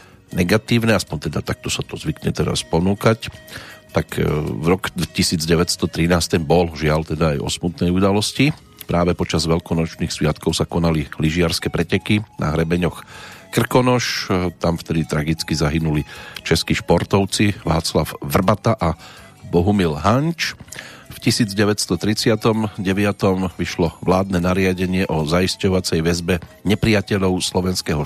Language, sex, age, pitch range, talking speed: Slovak, male, 40-59, 85-105 Hz, 110 wpm